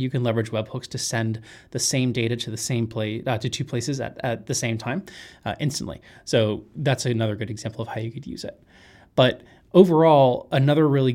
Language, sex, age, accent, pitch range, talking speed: English, male, 20-39, American, 115-130 Hz, 210 wpm